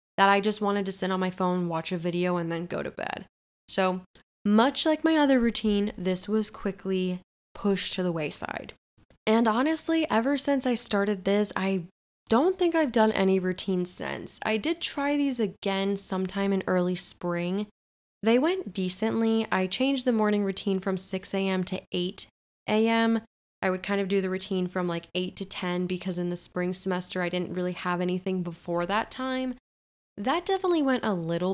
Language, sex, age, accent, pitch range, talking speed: English, female, 10-29, American, 180-220 Hz, 185 wpm